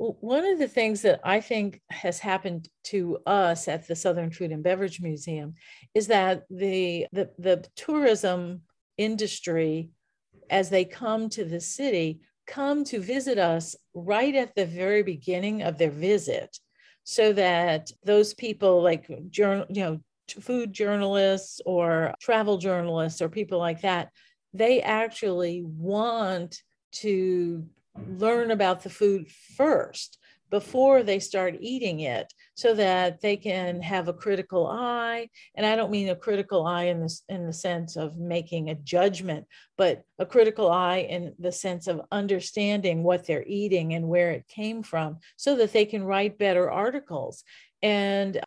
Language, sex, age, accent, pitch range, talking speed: English, female, 50-69, American, 175-215 Hz, 150 wpm